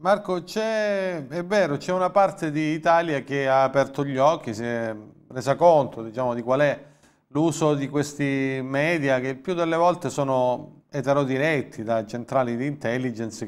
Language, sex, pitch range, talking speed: Italian, male, 130-165 Hz, 160 wpm